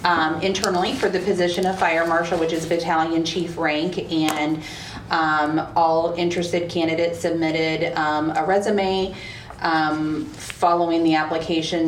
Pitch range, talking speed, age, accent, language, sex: 145-165 Hz, 130 wpm, 30-49, American, English, female